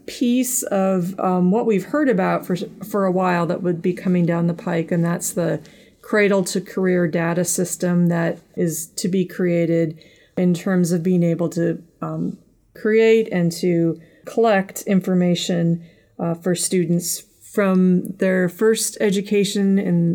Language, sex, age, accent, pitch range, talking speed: English, female, 40-59, American, 170-195 Hz, 150 wpm